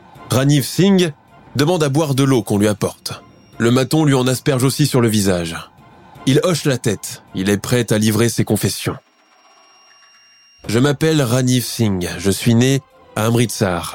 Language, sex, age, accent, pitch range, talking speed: French, male, 20-39, French, 110-135 Hz, 170 wpm